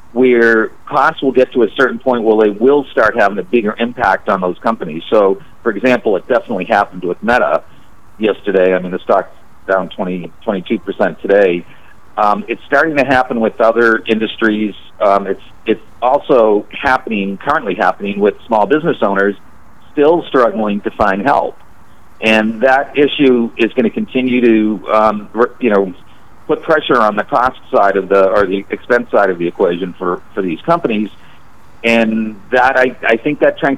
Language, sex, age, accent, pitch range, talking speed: English, male, 50-69, American, 100-125 Hz, 170 wpm